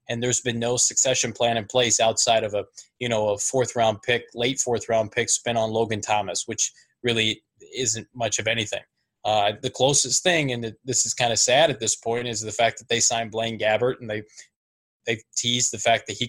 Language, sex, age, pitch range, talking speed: English, male, 20-39, 110-125 Hz, 220 wpm